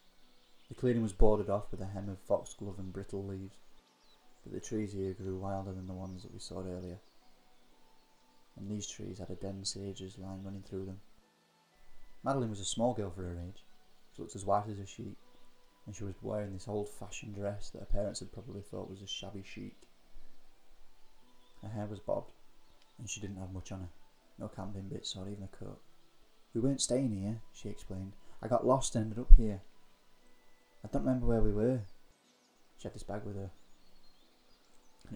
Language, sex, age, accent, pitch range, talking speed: English, male, 20-39, British, 95-110 Hz, 195 wpm